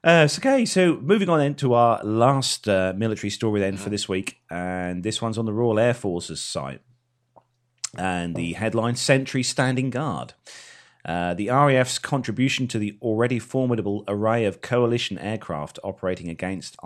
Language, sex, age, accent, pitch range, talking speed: English, male, 30-49, British, 95-125 Hz, 160 wpm